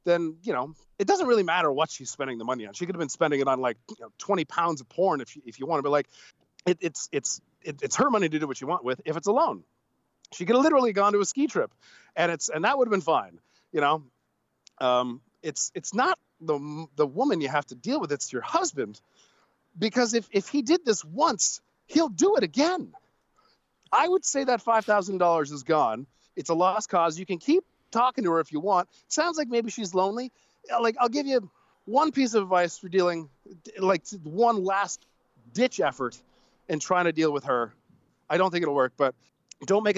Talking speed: 225 wpm